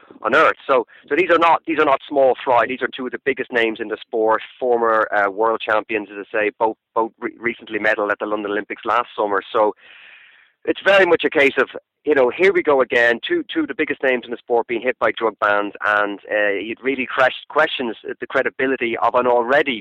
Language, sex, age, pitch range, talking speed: English, male, 30-49, 110-145 Hz, 235 wpm